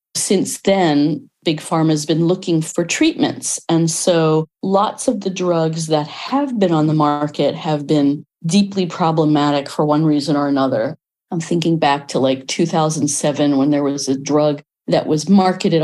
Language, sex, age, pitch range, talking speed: English, female, 40-59, 155-195 Hz, 165 wpm